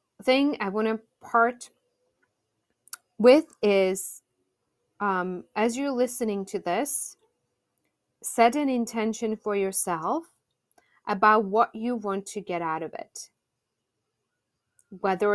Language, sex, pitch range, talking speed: English, female, 190-235 Hz, 110 wpm